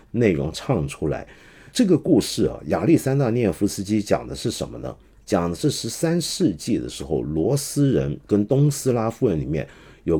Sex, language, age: male, Chinese, 50-69